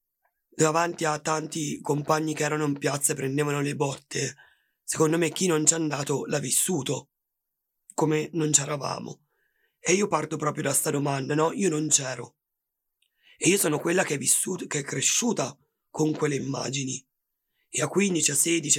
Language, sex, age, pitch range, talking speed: Italian, male, 30-49, 140-160 Hz, 170 wpm